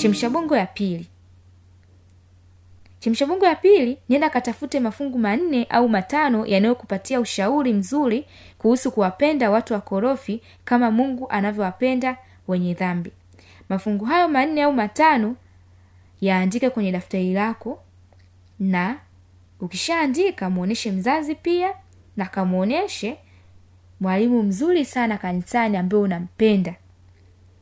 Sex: female